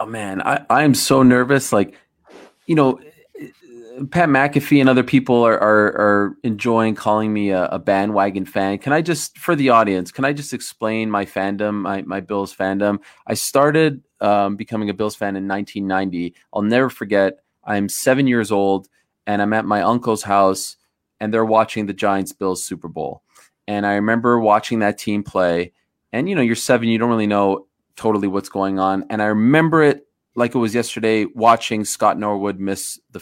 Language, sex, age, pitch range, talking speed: English, male, 20-39, 100-120 Hz, 185 wpm